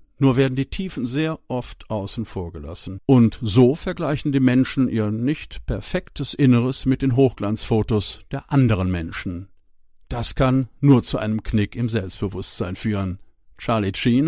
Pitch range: 100-135 Hz